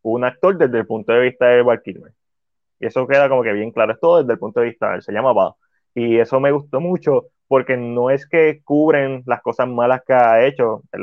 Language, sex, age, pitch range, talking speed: Spanish, male, 20-39, 110-130 Hz, 235 wpm